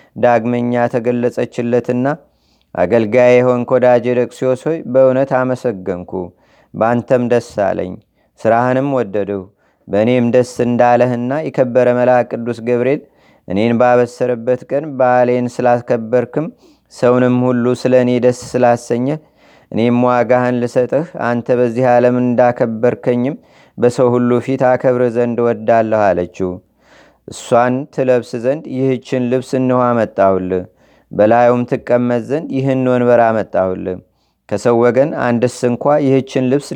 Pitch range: 120-125 Hz